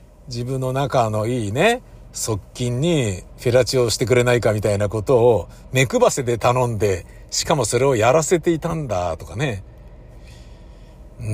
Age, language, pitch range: 50-69, Japanese, 105-150 Hz